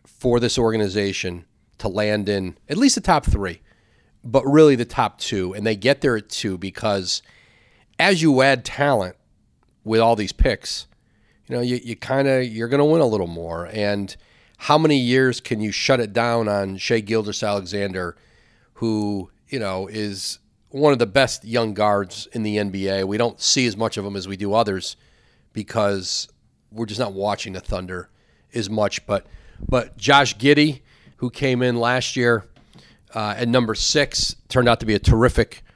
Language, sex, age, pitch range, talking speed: English, male, 40-59, 100-125 Hz, 185 wpm